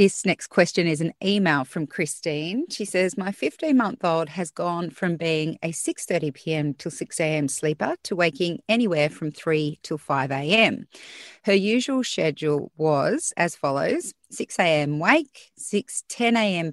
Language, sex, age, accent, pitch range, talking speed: English, female, 30-49, Australian, 155-210 Hz, 155 wpm